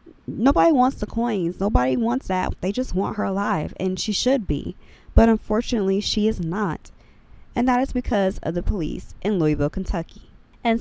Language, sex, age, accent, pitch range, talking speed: English, female, 20-39, American, 175-235 Hz, 180 wpm